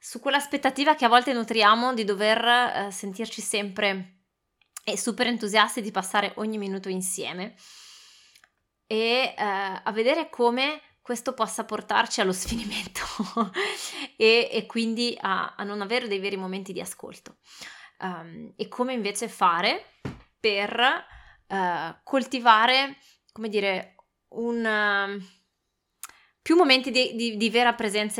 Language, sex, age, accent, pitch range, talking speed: Italian, female, 20-39, native, 200-245 Hz, 120 wpm